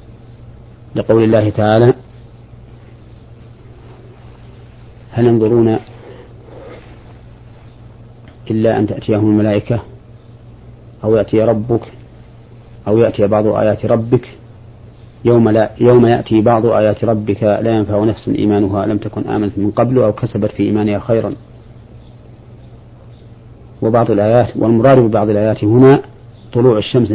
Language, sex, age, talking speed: Arabic, male, 40-59, 100 wpm